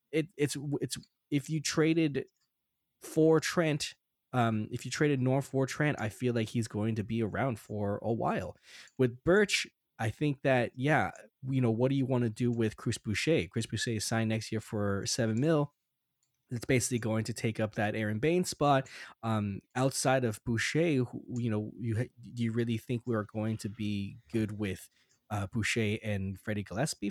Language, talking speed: English, 185 wpm